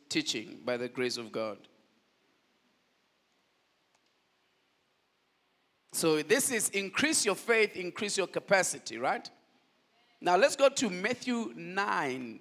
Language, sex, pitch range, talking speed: English, male, 135-185 Hz, 105 wpm